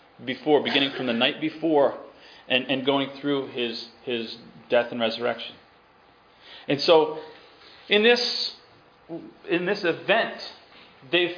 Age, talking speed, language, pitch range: 40-59, 120 wpm, English, 145-195 Hz